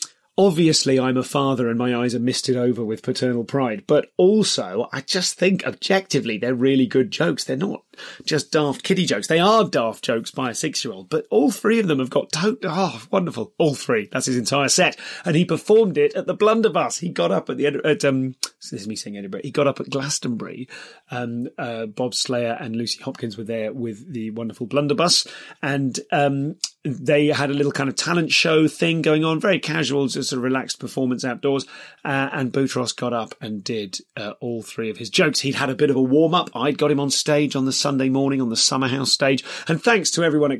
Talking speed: 220 wpm